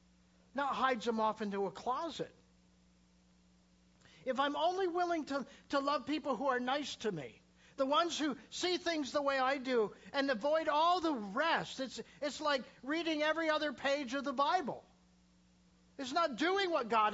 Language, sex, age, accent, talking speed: English, male, 50-69, American, 170 wpm